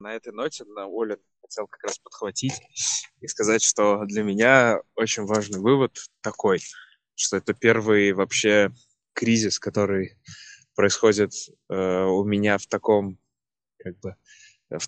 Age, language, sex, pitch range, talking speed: 20-39, Russian, male, 100-110 Hz, 135 wpm